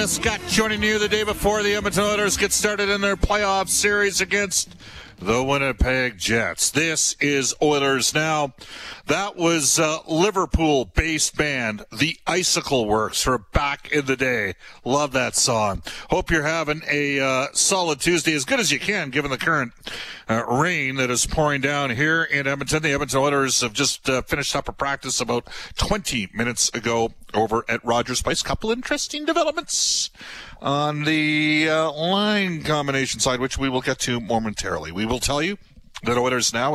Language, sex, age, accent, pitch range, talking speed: English, male, 50-69, American, 125-170 Hz, 170 wpm